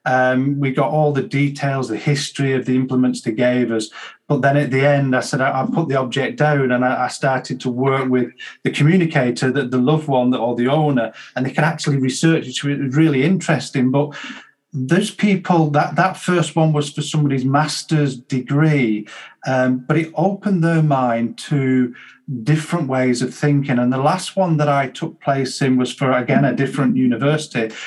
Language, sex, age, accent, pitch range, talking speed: English, male, 40-59, British, 130-155 Hz, 195 wpm